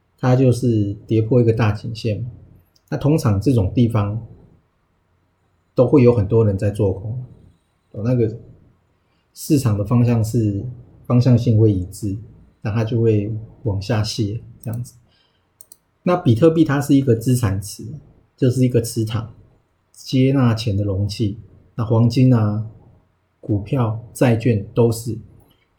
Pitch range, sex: 105-125 Hz, male